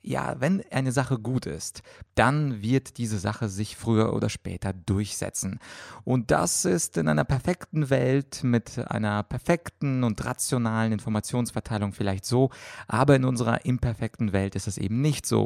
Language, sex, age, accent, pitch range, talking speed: German, male, 30-49, German, 105-125 Hz, 155 wpm